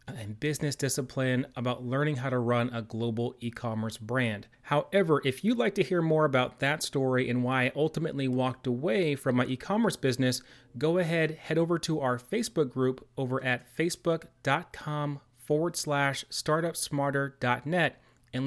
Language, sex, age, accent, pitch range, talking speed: English, male, 30-49, American, 120-150 Hz, 155 wpm